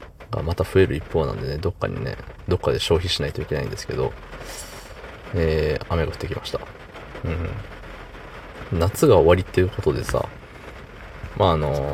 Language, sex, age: Japanese, male, 20-39